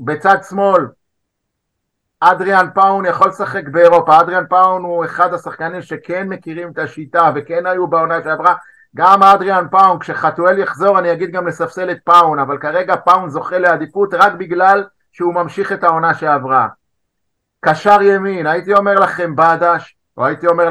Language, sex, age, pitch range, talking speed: Hebrew, male, 50-69, 145-195 Hz, 150 wpm